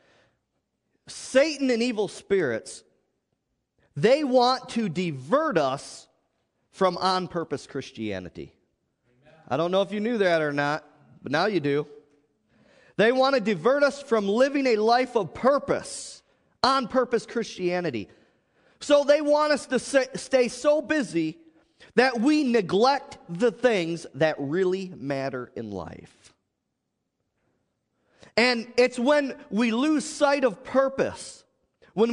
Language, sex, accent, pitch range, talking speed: English, male, American, 165-260 Hz, 120 wpm